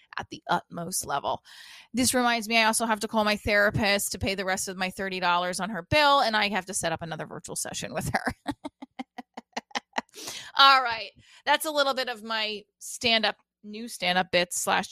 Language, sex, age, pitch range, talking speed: English, female, 20-39, 190-250 Hz, 200 wpm